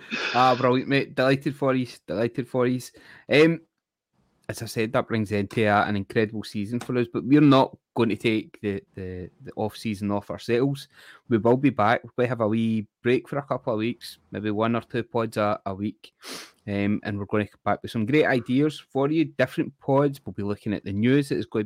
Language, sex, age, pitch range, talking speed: English, male, 20-39, 105-130 Hz, 230 wpm